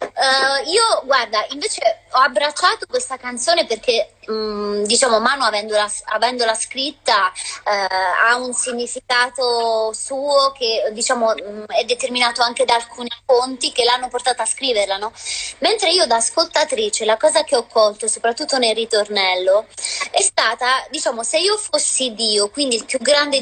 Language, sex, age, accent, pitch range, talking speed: Italian, female, 30-49, native, 235-290 Hz, 140 wpm